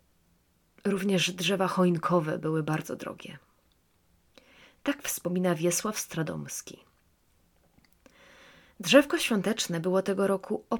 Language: Polish